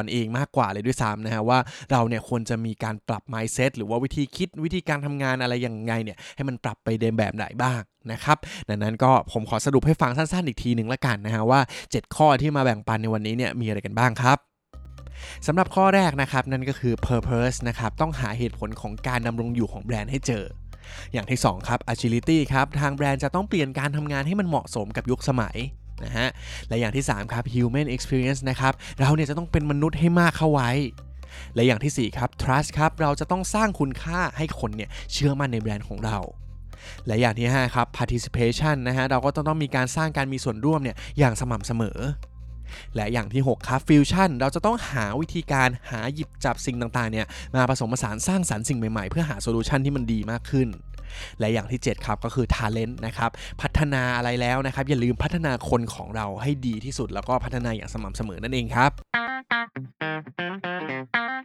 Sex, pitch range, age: male, 115-140 Hz, 20-39